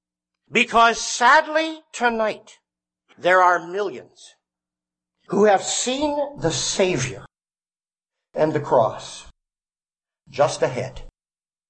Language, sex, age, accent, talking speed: English, male, 60-79, American, 80 wpm